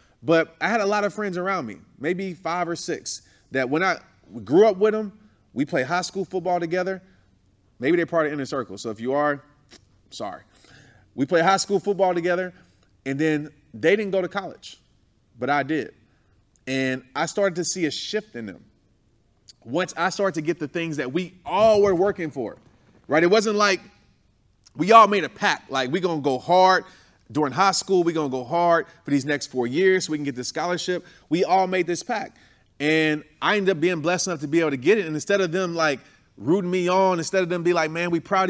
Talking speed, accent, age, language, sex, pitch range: 220 wpm, American, 30-49, English, male, 125-185 Hz